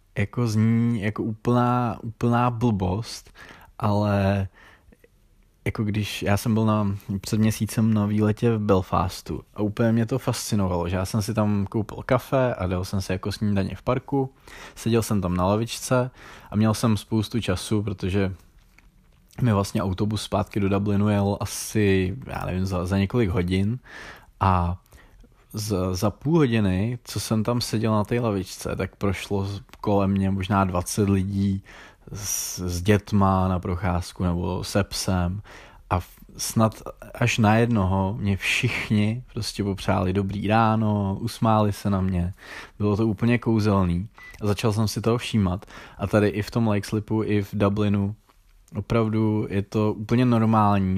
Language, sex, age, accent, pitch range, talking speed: Czech, male, 20-39, native, 95-110 Hz, 155 wpm